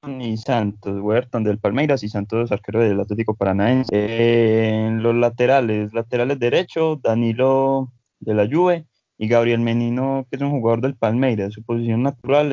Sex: male